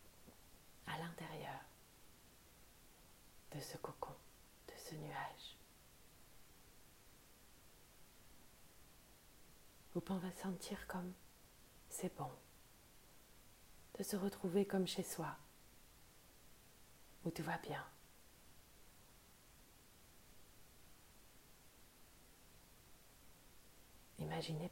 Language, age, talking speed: French, 40-59, 60 wpm